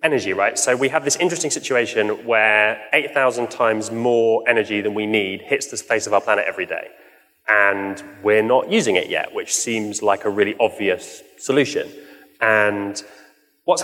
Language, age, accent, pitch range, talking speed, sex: English, 20-39, British, 105-130 Hz, 170 wpm, male